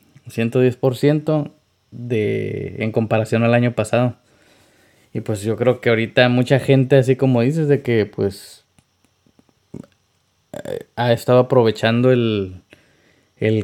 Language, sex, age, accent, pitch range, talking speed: Spanish, male, 20-39, Mexican, 105-125 Hz, 115 wpm